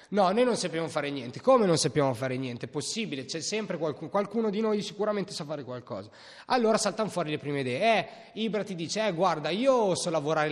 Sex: male